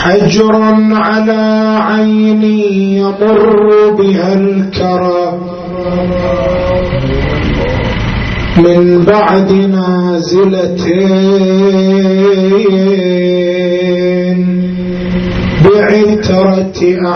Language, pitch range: Arabic, 185-220 Hz